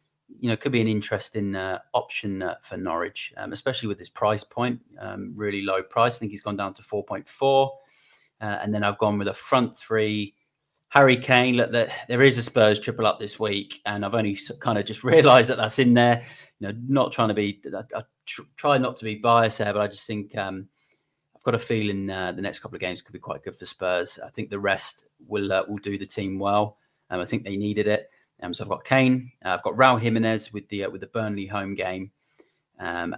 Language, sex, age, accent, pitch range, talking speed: English, male, 30-49, British, 105-120 Hz, 240 wpm